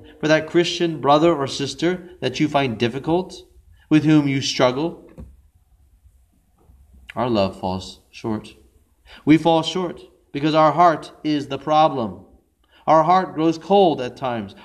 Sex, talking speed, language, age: male, 135 wpm, English, 40-59